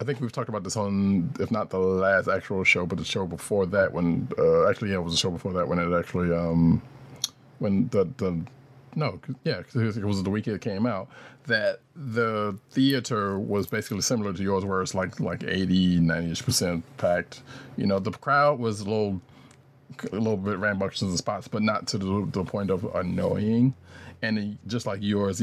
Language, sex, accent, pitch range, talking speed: English, male, American, 95-125 Hz, 205 wpm